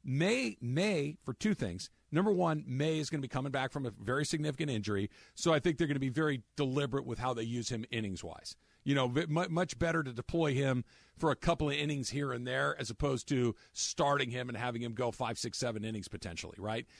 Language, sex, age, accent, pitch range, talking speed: English, male, 50-69, American, 125-180 Hz, 230 wpm